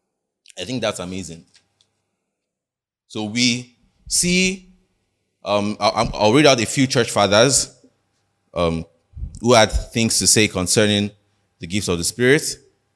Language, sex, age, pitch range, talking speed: English, male, 20-39, 95-140 Hz, 125 wpm